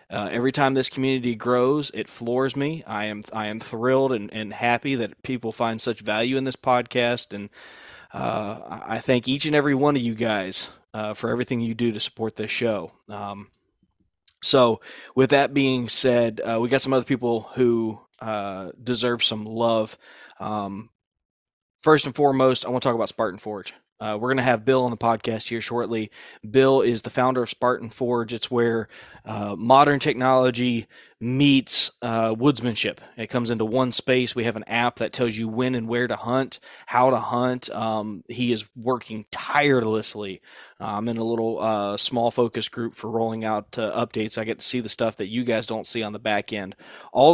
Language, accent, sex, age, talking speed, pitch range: English, American, male, 20-39, 195 wpm, 110-130 Hz